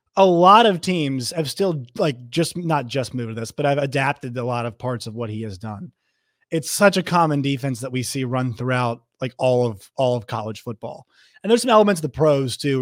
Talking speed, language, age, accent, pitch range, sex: 235 wpm, English, 30-49, American, 120-160 Hz, male